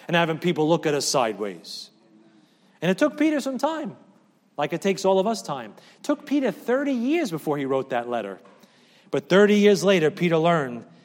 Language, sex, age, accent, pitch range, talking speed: English, male, 40-59, American, 150-215 Hz, 195 wpm